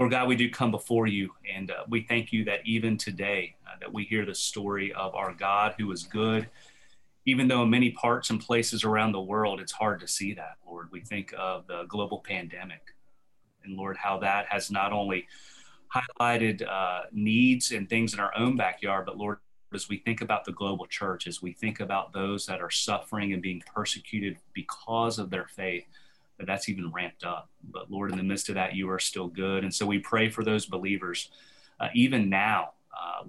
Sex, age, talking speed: male, 30-49, 205 wpm